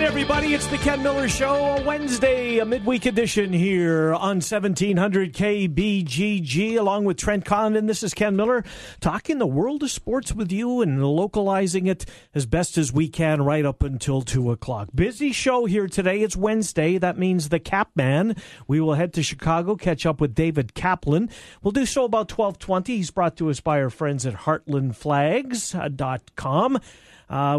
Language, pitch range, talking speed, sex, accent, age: English, 140-195 Hz, 170 wpm, male, American, 50-69